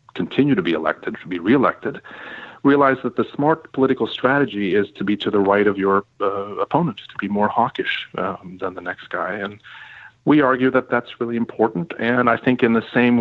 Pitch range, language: 100-125 Hz, English